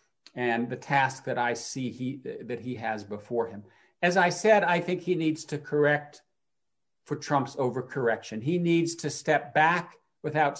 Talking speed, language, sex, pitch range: 165 wpm, English, male, 130-160 Hz